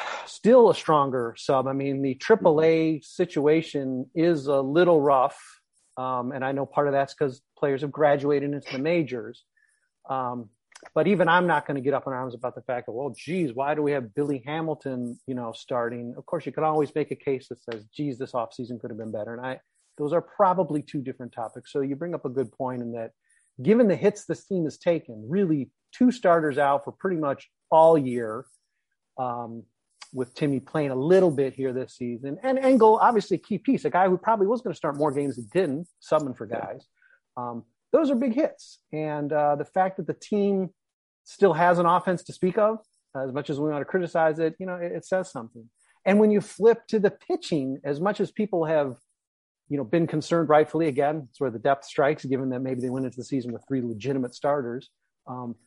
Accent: American